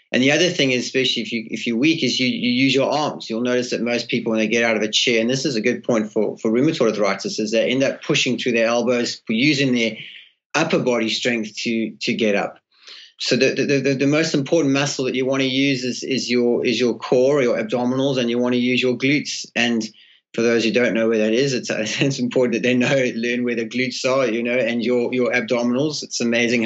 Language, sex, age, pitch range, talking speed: English, male, 30-49, 115-135 Hz, 250 wpm